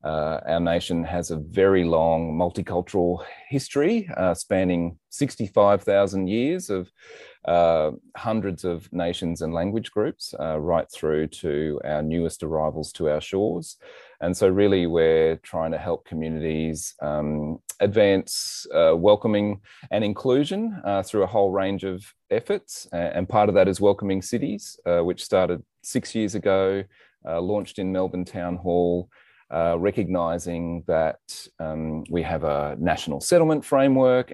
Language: English